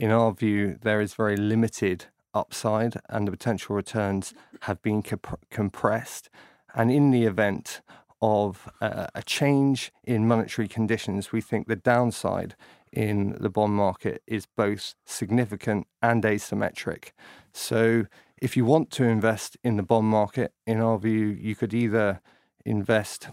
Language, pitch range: English, 105-120 Hz